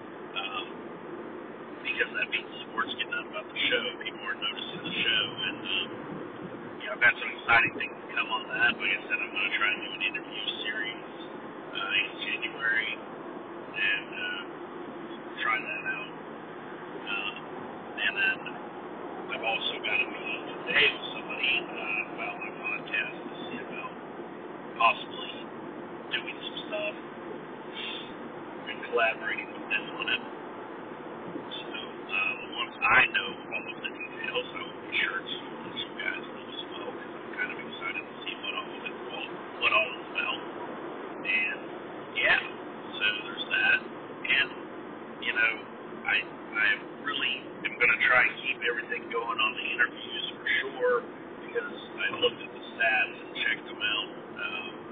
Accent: American